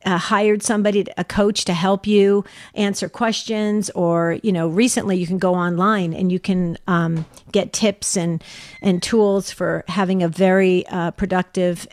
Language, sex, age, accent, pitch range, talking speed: English, female, 50-69, American, 185-225 Hz, 165 wpm